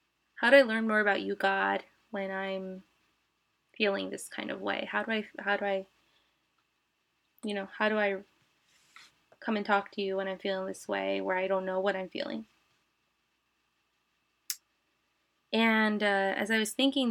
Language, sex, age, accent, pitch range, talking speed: English, female, 20-39, American, 195-245 Hz, 165 wpm